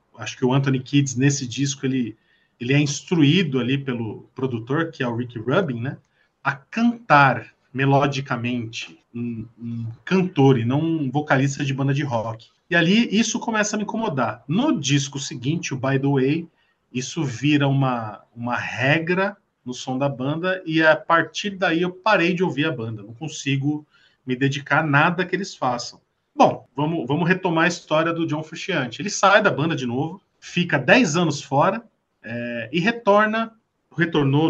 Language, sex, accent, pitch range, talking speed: Portuguese, male, Brazilian, 130-185 Hz, 170 wpm